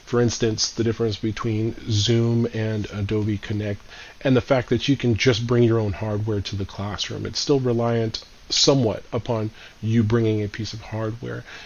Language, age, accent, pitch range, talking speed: English, 40-59, American, 110-120 Hz, 175 wpm